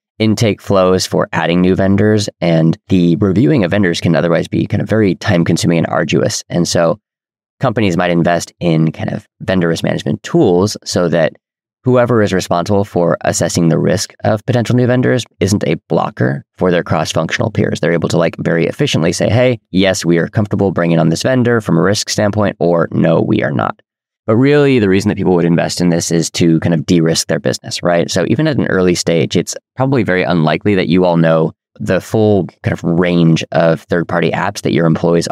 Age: 20-39